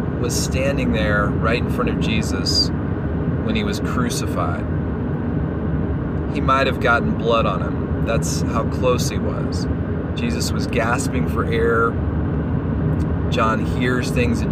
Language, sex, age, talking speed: English, male, 30-49, 135 wpm